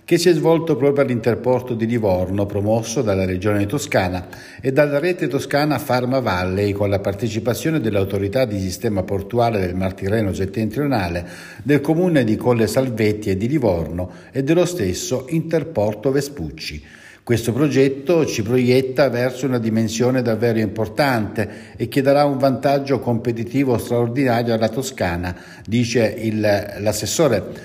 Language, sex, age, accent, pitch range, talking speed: Italian, male, 60-79, native, 105-135 Hz, 135 wpm